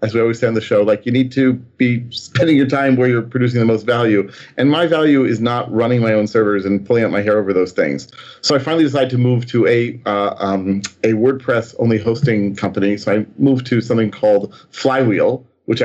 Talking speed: 225 wpm